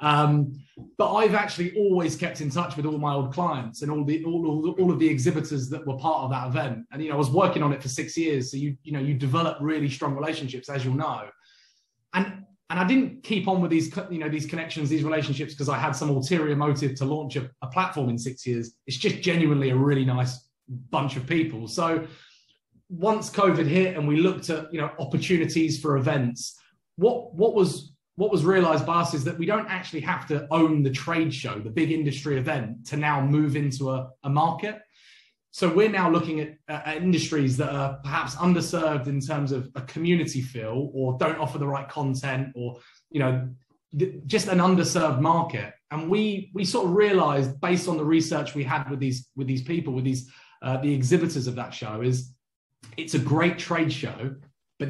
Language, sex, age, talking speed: English, male, 20-39, 210 wpm